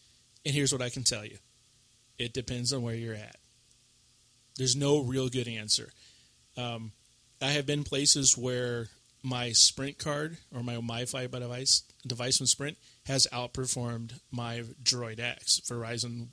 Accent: American